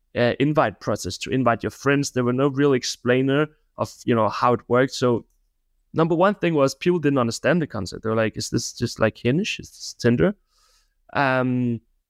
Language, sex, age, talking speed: English, male, 20-39, 200 wpm